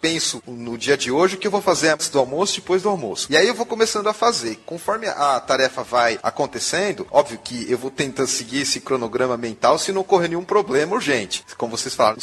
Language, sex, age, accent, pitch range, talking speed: English, male, 30-49, Brazilian, 135-190 Hz, 220 wpm